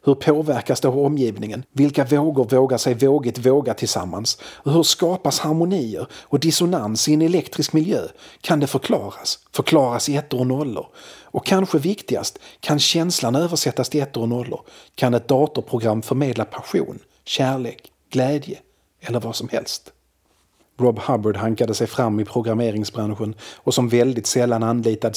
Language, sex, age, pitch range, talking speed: Swedish, male, 40-59, 115-135 Hz, 145 wpm